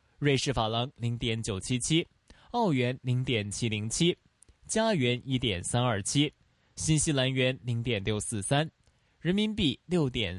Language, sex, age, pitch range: Chinese, male, 20-39, 115-150 Hz